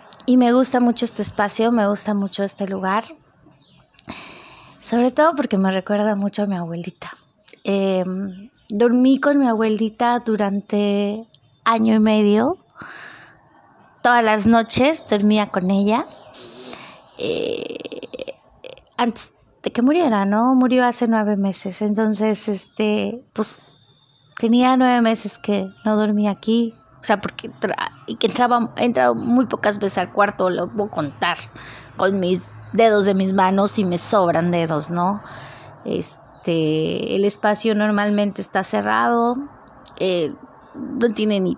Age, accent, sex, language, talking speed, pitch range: 20-39, Mexican, female, Spanish, 130 wpm, 190-240 Hz